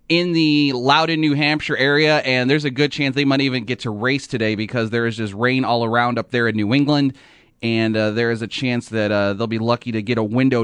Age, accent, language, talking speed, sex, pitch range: 30-49, American, English, 255 wpm, male, 115-145 Hz